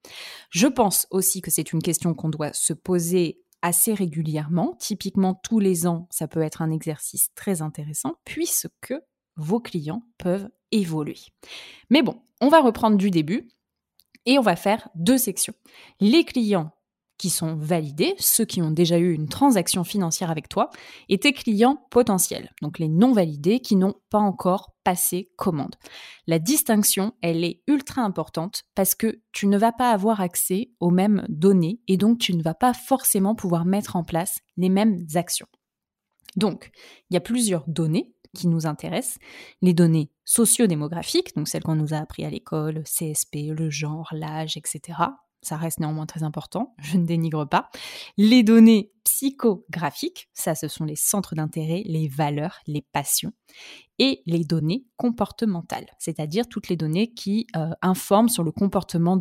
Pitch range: 165-220 Hz